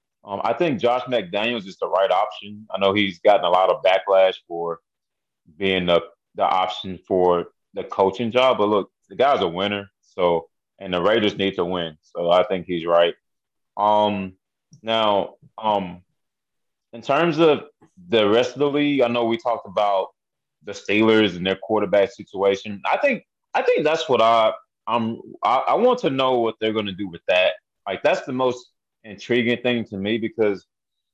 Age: 20-39